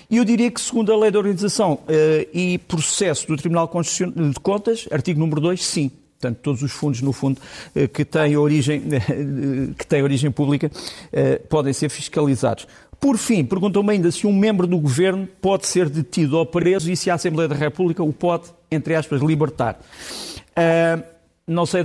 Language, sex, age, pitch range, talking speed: Portuguese, male, 50-69, 140-180 Hz, 175 wpm